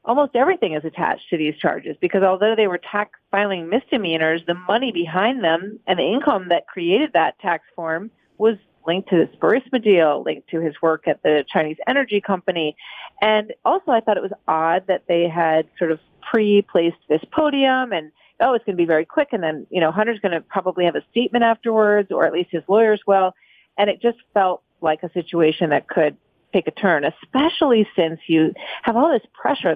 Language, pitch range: English, 165-215 Hz